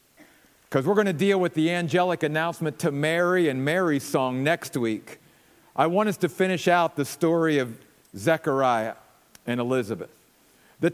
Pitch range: 155-235 Hz